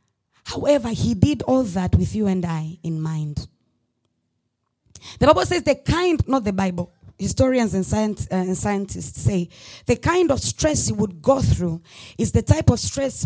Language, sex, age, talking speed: English, female, 20-39, 175 wpm